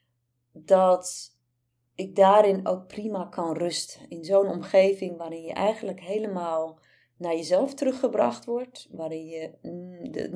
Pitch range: 170-220 Hz